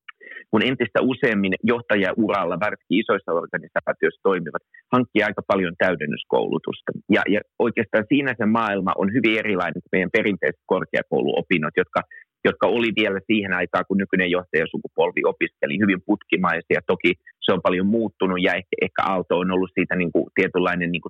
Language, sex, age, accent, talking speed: Finnish, male, 30-49, native, 155 wpm